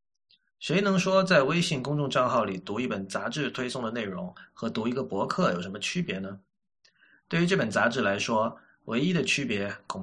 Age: 20-39